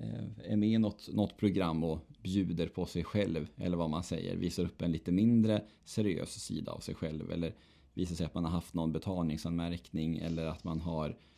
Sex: male